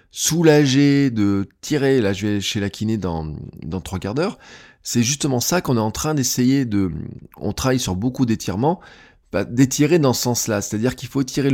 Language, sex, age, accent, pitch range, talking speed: French, male, 20-39, French, 100-135 Hz, 195 wpm